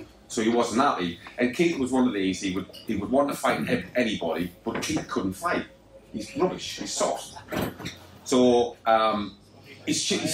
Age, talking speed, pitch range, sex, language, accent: 30-49, 180 wpm, 100-140 Hz, male, English, British